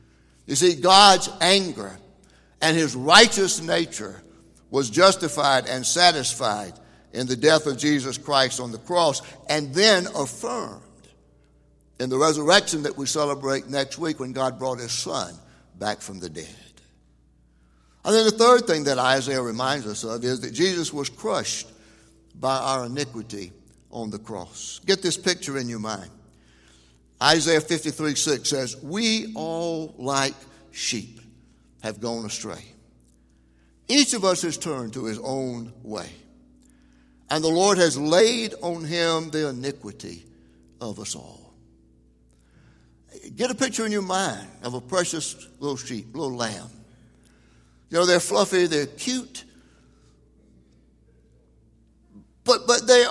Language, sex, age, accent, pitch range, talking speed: English, male, 60-79, American, 110-175 Hz, 140 wpm